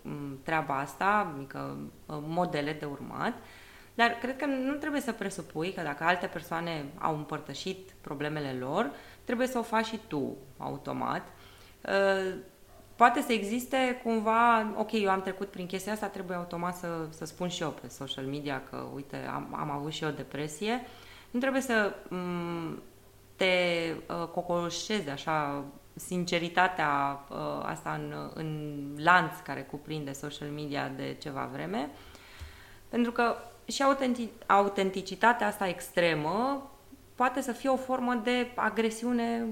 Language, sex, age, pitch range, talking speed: Romanian, female, 20-39, 140-215 Hz, 135 wpm